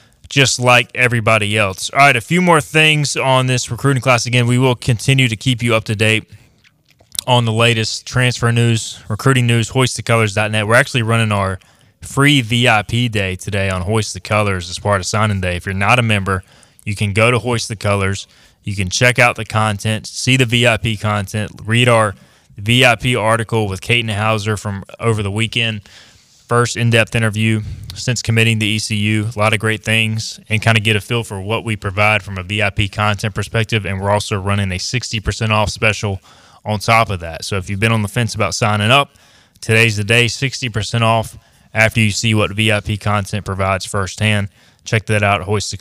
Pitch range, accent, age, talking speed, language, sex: 105-125 Hz, American, 20-39, 195 wpm, English, male